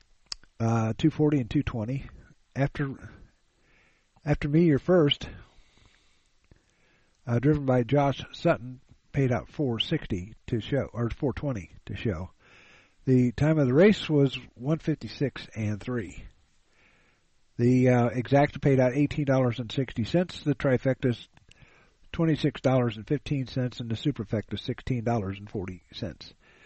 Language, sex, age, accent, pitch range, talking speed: English, male, 50-69, American, 115-145 Hz, 160 wpm